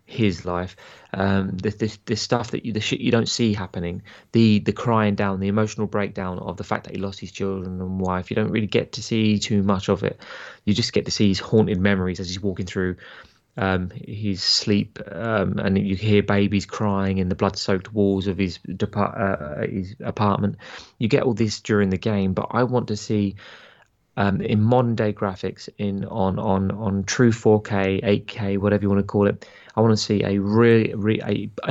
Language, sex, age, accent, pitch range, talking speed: English, male, 20-39, British, 95-110 Hz, 210 wpm